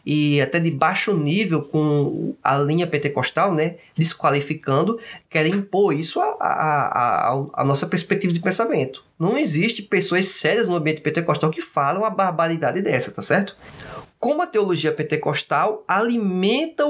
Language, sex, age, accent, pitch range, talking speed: Portuguese, male, 20-39, Brazilian, 150-205 Hz, 150 wpm